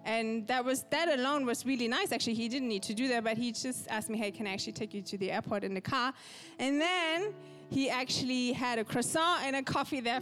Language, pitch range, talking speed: English, 220-280 Hz, 255 wpm